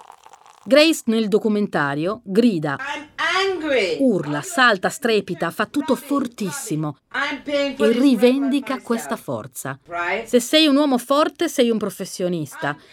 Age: 40-59